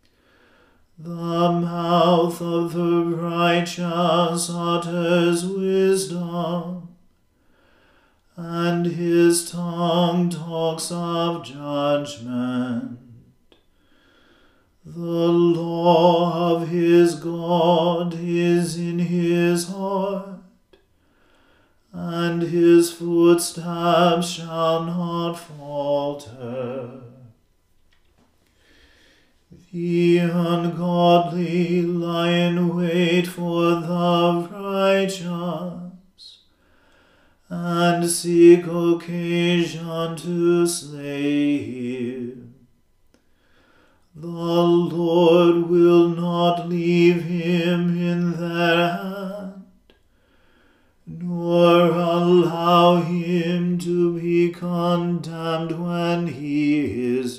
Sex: male